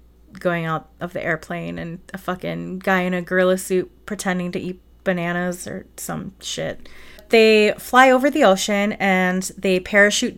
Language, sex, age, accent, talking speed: English, female, 30-49, American, 160 wpm